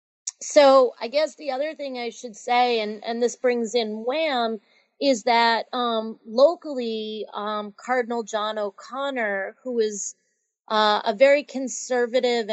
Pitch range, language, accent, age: 215-250 Hz, English, American, 30-49